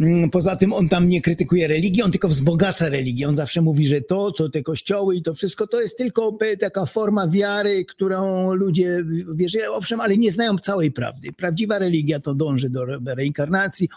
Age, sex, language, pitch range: 50-69, male, Polish, 145-195 Hz